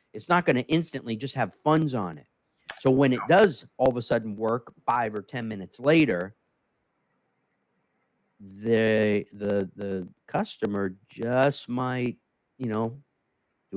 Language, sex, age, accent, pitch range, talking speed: English, male, 50-69, American, 105-135 Hz, 145 wpm